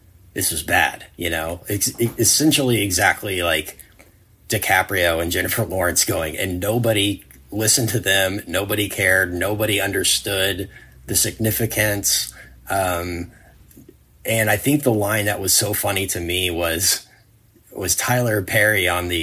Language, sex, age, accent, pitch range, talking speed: English, male, 30-49, American, 90-110 Hz, 135 wpm